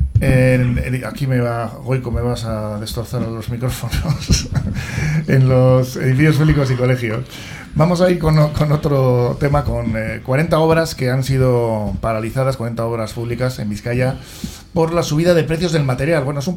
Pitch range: 120-145 Hz